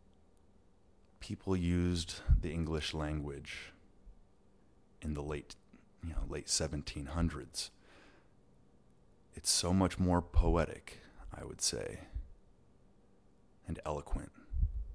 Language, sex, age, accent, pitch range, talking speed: English, male, 30-49, American, 75-95 Hz, 90 wpm